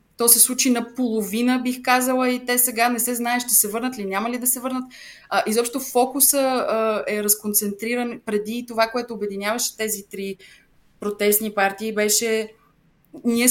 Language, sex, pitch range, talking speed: English, female, 200-235 Hz, 160 wpm